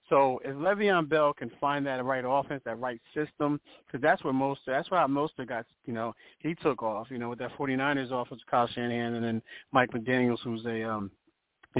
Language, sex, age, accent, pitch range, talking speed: English, male, 30-49, American, 115-145 Hz, 210 wpm